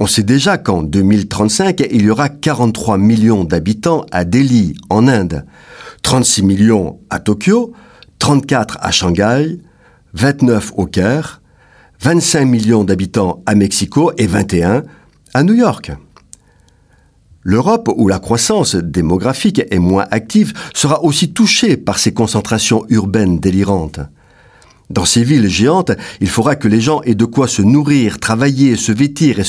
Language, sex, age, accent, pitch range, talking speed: French, male, 50-69, French, 100-150 Hz, 140 wpm